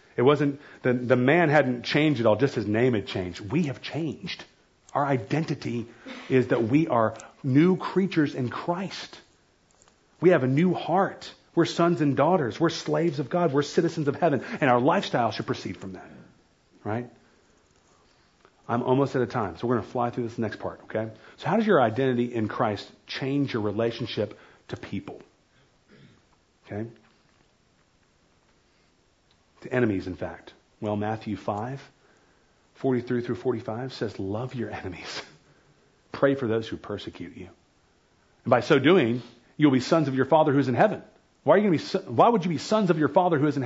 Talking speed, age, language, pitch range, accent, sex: 170 wpm, 40-59, English, 110-145 Hz, American, male